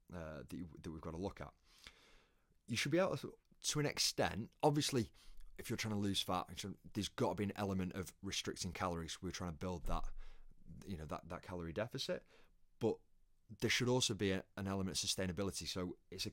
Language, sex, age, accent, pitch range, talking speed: English, male, 20-39, British, 85-100 Hz, 200 wpm